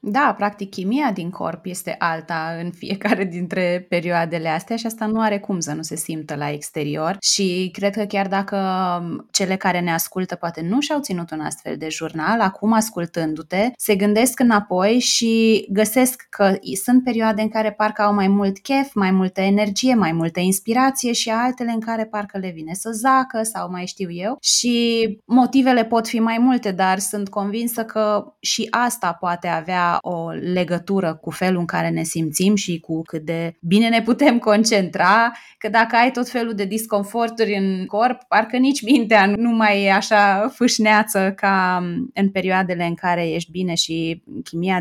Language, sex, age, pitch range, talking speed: Romanian, female, 20-39, 180-230 Hz, 175 wpm